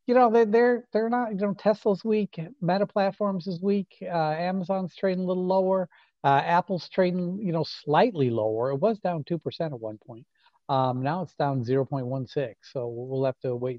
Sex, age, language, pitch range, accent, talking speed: male, 50-69, English, 125-190 Hz, American, 185 wpm